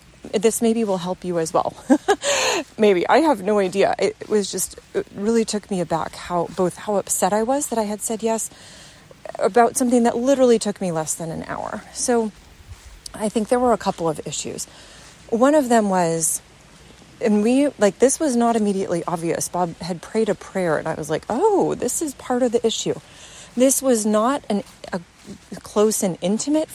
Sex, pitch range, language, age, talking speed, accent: female, 190-260 Hz, English, 30-49, 195 wpm, American